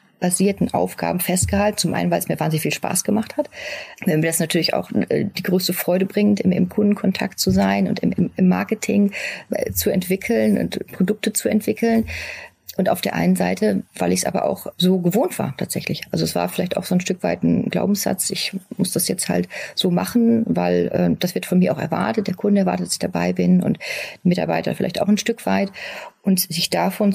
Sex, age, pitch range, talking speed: female, 40-59, 180-210 Hz, 210 wpm